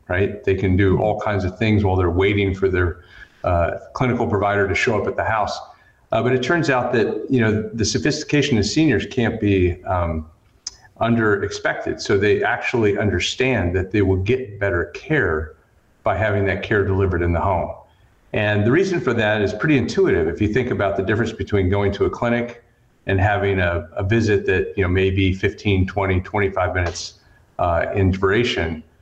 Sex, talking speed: male, 190 wpm